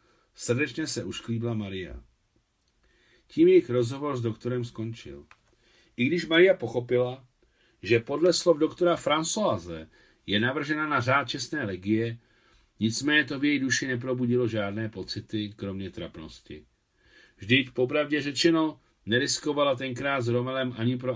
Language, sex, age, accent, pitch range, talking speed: Czech, male, 50-69, native, 105-145 Hz, 125 wpm